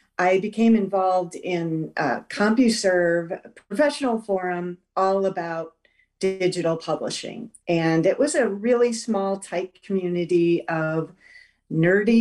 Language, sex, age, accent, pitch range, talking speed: English, female, 50-69, American, 170-220 Hz, 105 wpm